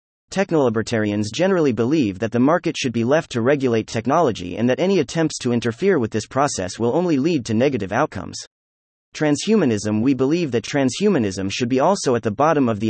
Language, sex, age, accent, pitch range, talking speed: English, male, 30-49, American, 105-155 Hz, 185 wpm